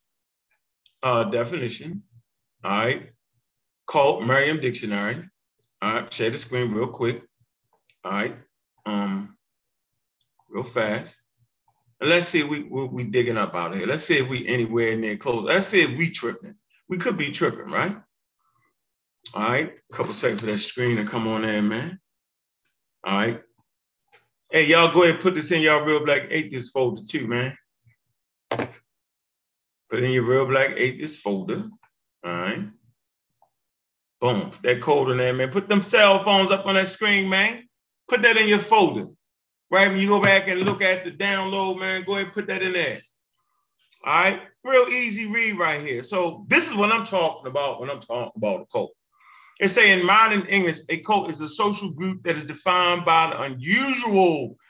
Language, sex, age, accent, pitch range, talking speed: English, male, 30-49, American, 120-195 Hz, 180 wpm